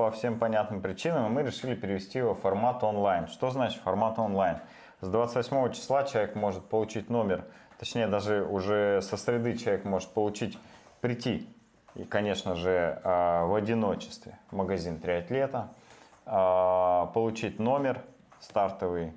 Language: Russian